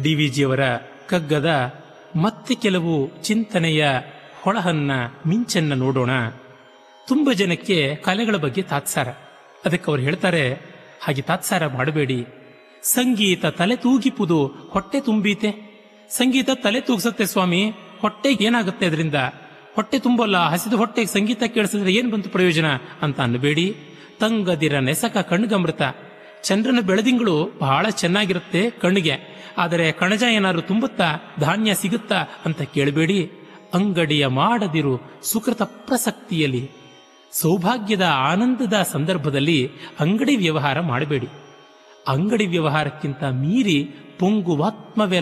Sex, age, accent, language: male, 30-49, native, Kannada